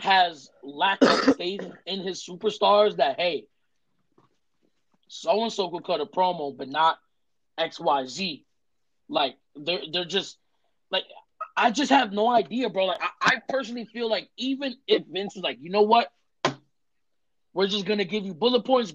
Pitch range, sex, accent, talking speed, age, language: 185-235 Hz, male, American, 160 wpm, 20-39, English